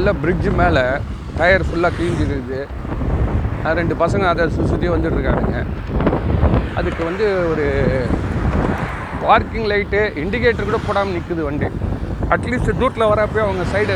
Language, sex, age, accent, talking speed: Tamil, male, 40-59, native, 110 wpm